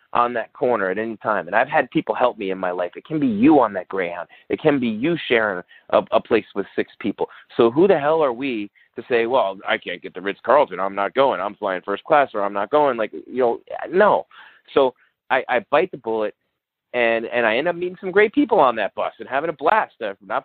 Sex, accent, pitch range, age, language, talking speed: male, American, 105-140 Hz, 30-49, English, 250 wpm